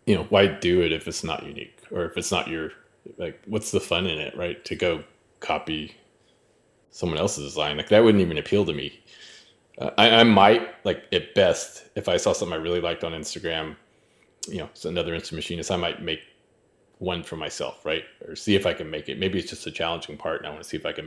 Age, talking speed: 20-39, 240 wpm